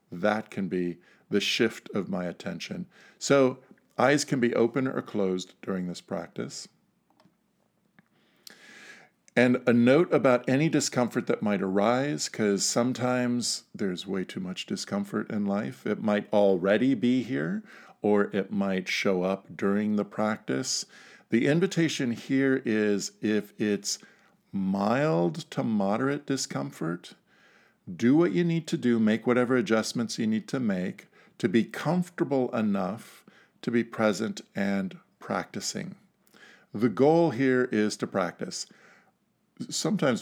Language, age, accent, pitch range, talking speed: English, 50-69, American, 100-135 Hz, 130 wpm